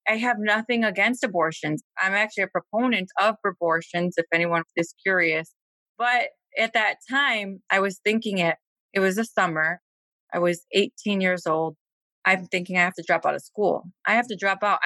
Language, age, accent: English, 20-39, American